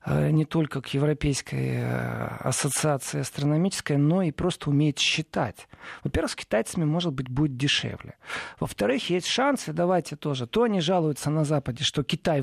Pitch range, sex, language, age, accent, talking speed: 135-180 Hz, male, Russian, 40-59, native, 145 wpm